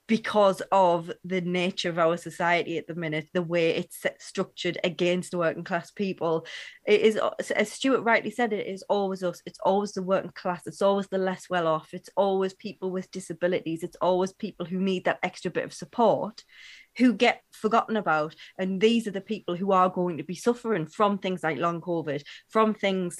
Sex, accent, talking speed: female, British, 195 wpm